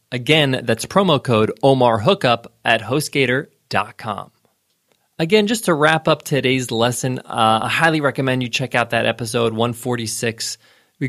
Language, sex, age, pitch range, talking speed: English, male, 20-39, 115-150 Hz, 135 wpm